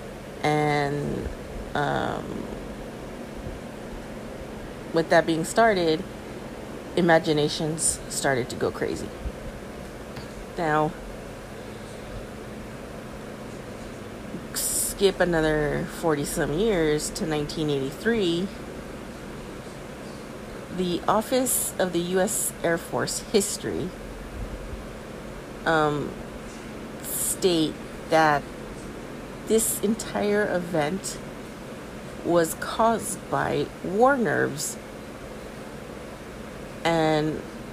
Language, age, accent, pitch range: English, 30-49, American, 150-180 Hz